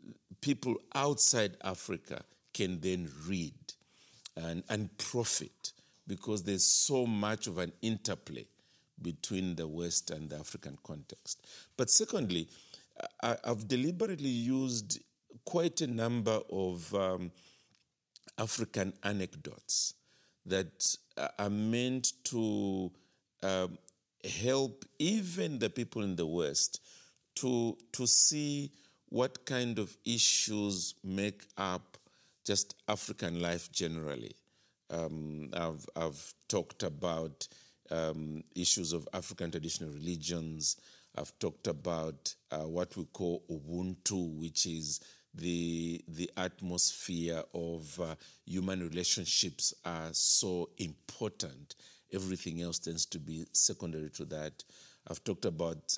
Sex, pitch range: male, 85-110 Hz